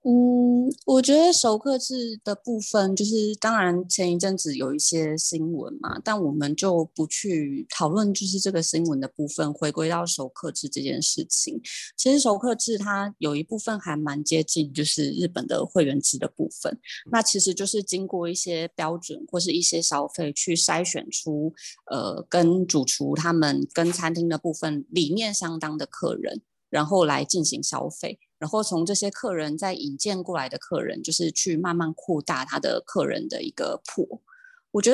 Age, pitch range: 20-39, 160-215 Hz